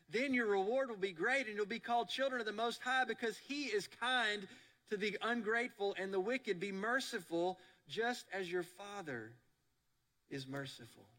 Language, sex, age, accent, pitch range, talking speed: English, male, 40-59, American, 125-195 Hz, 175 wpm